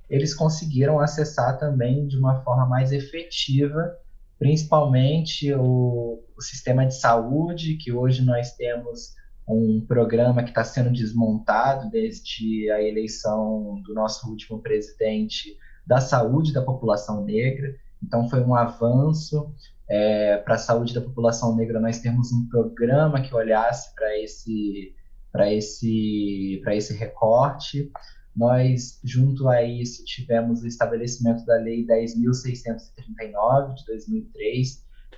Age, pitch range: 20-39, 115-140 Hz